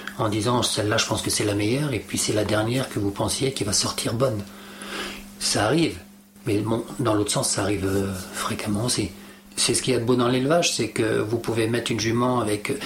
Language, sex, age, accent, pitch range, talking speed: French, male, 40-59, French, 110-175 Hz, 230 wpm